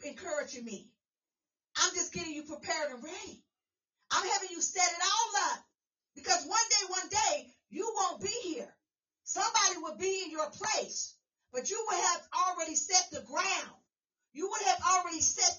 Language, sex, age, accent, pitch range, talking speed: English, female, 40-59, American, 315-410 Hz, 170 wpm